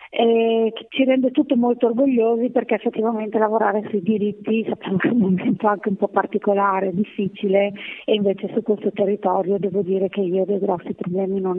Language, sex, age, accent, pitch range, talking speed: Italian, female, 30-49, native, 190-215 Hz, 175 wpm